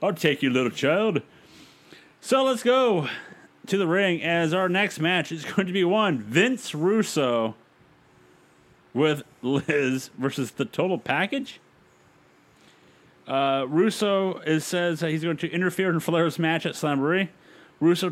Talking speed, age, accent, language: 140 wpm, 30-49, American, English